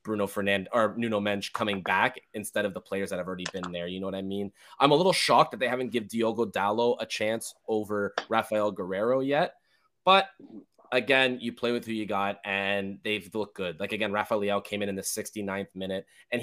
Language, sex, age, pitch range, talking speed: English, male, 20-39, 100-140 Hz, 215 wpm